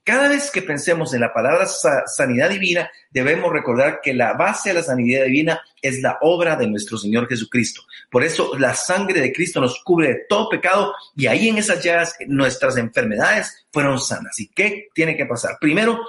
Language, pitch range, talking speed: Spanish, 130-180 Hz, 190 wpm